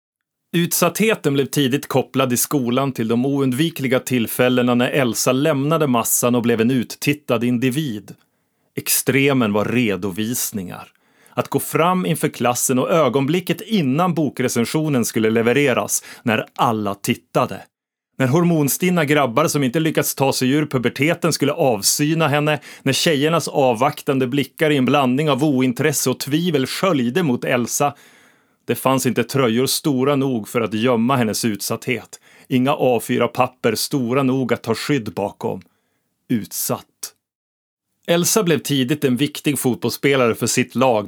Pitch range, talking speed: 120-150 Hz, 135 wpm